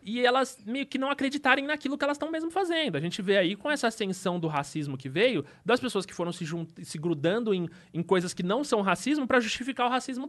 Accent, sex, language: Brazilian, male, Portuguese